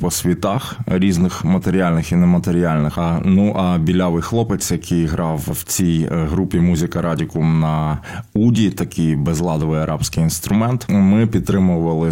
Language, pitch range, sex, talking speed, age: Ukrainian, 90-105 Hz, male, 130 wpm, 20-39